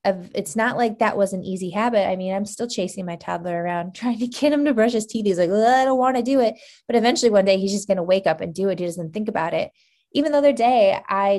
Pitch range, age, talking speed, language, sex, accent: 180-230 Hz, 20-39, 295 wpm, English, female, American